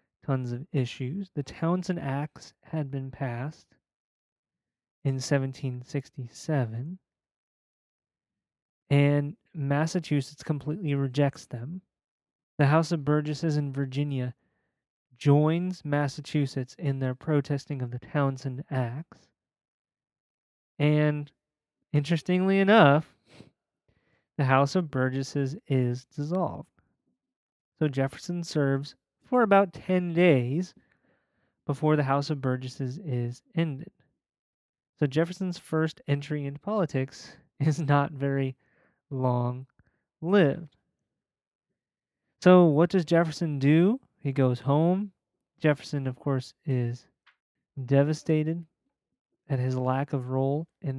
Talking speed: 95 wpm